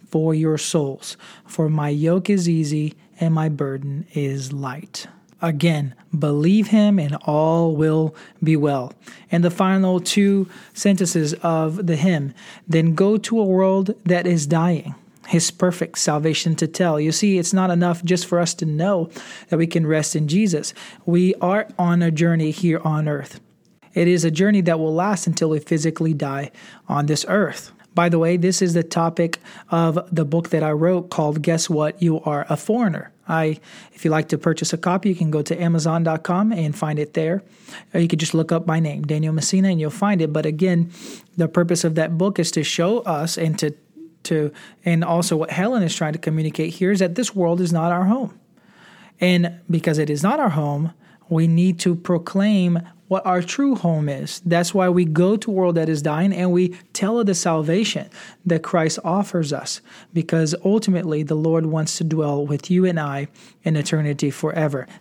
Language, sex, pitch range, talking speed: English, male, 160-185 Hz, 195 wpm